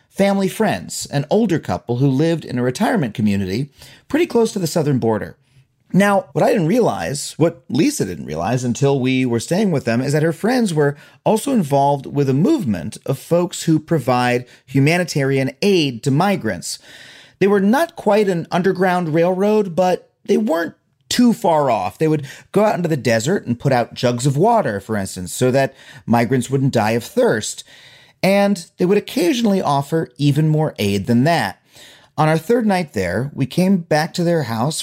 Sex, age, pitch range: male, 30-49, 125-180 Hz